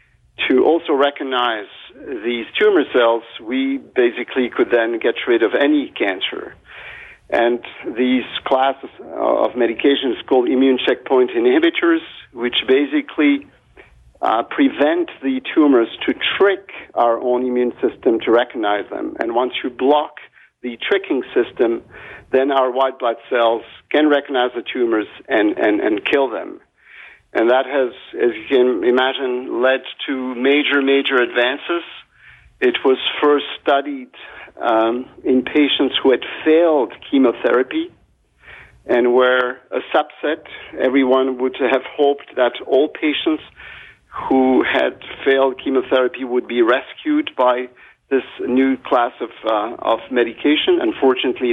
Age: 50-69